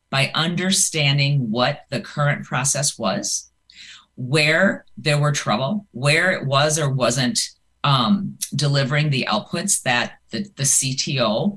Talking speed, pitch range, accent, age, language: 125 wpm, 135-165 Hz, American, 50-69, English